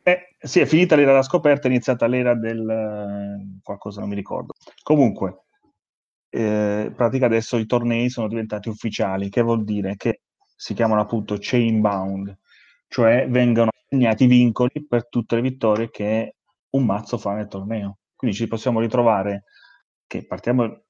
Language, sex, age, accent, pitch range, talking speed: Italian, male, 30-49, native, 105-125 Hz, 155 wpm